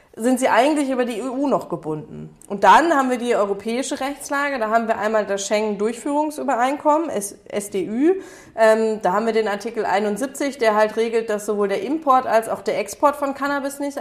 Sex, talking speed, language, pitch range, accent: female, 185 wpm, German, 205-270 Hz, German